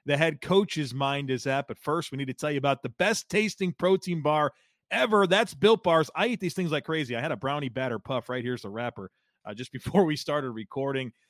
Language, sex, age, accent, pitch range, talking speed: English, male, 40-59, American, 120-155 Hz, 240 wpm